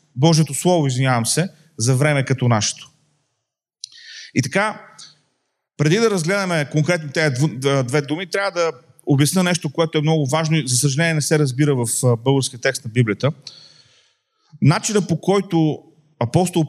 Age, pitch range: 40-59, 125-165 Hz